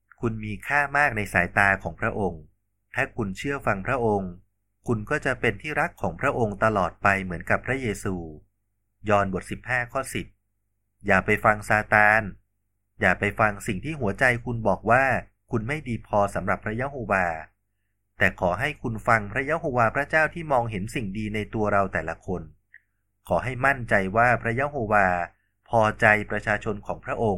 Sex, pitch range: male, 100-115 Hz